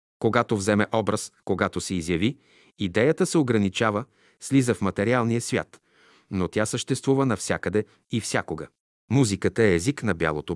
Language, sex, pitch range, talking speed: Bulgarian, male, 95-120 Hz, 135 wpm